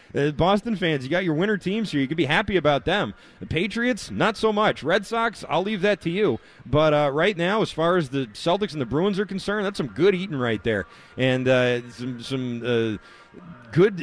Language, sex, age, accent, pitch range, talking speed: English, male, 30-49, American, 120-165 Hz, 225 wpm